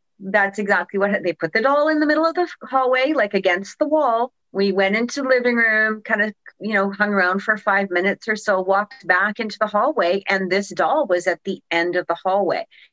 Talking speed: 225 wpm